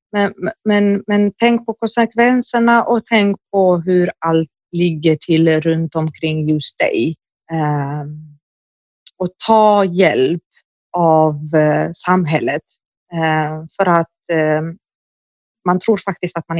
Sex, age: female, 30-49